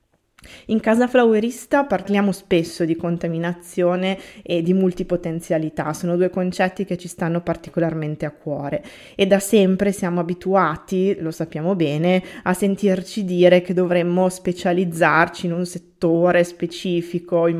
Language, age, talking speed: Italian, 20-39, 130 wpm